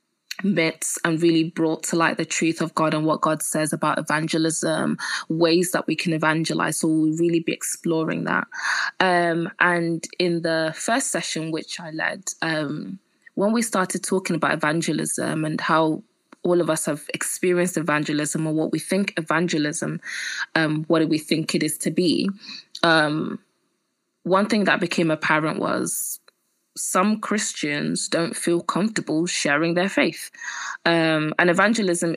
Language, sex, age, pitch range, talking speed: English, female, 20-39, 160-180 Hz, 155 wpm